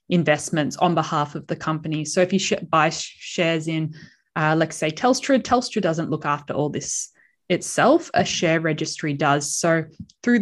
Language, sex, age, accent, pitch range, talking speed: English, female, 20-39, Australian, 160-195 Hz, 175 wpm